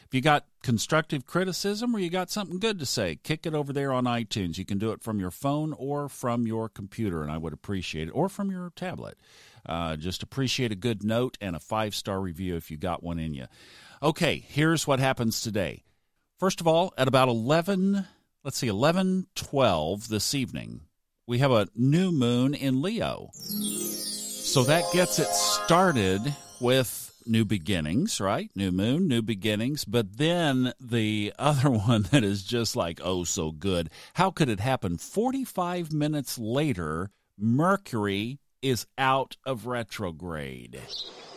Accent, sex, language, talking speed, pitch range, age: American, male, English, 165 wpm, 100-155 Hz, 50-69